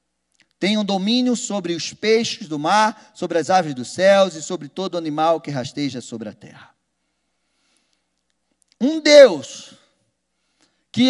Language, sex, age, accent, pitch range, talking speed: Portuguese, male, 40-59, Brazilian, 185-285 Hz, 135 wpm